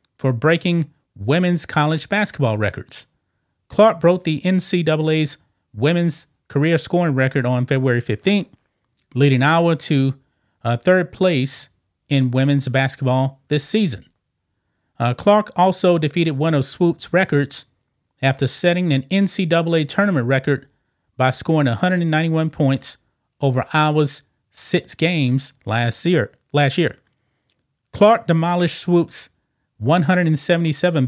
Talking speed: 110 wpm